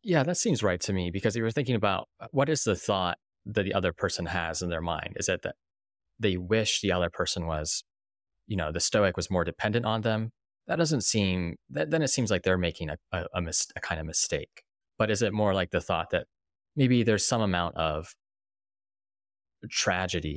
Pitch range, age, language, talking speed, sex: 80-105 Hz, 20-39, English, 215 wpm, male